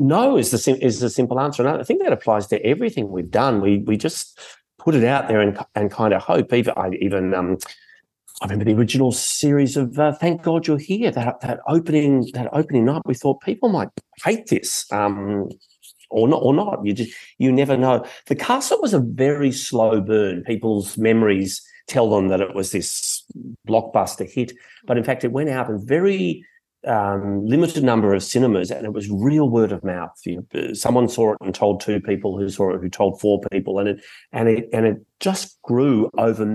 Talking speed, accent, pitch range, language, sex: 205 wpm, Australian, 100-125 Hz, English, male